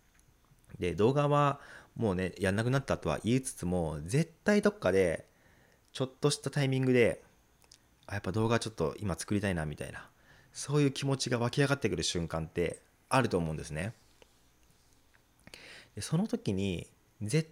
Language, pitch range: Japanese, 90-135 Hz